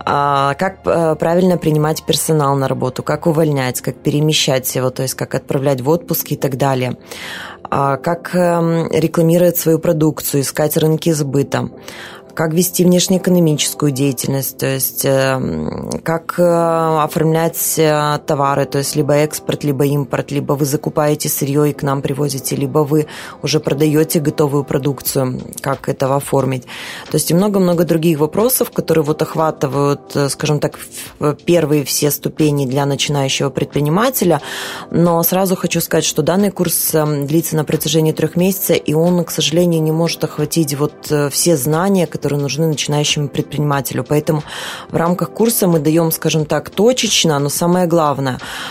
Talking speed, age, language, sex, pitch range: 140 wpm, 20-39, Russian, female, 145-165 Hz